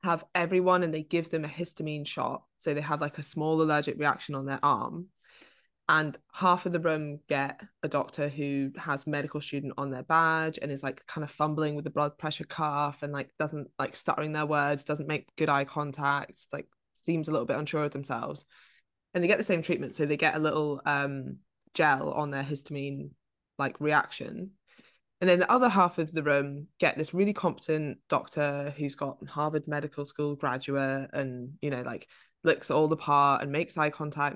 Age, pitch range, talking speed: 20-39, 145-165 Hz, 200 wpm